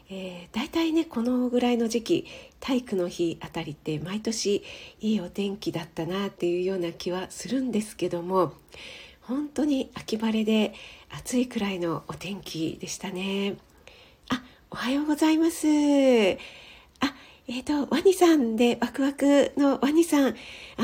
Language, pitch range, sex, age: Japanese, 195-260 Hz, female, 50-69